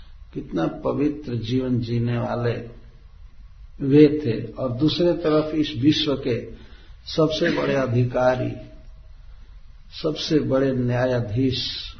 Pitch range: 115-155 Hz